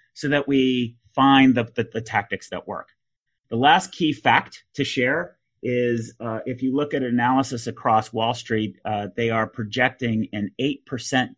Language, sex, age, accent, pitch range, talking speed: English, male, 30-49, American, 110-130 Hz, 175 wpm